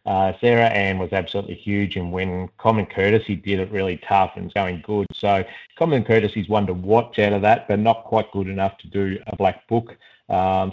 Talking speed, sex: 220 wpm, male